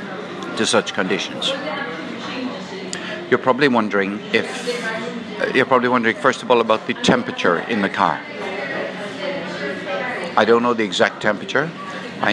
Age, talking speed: 60-79, 120 wpm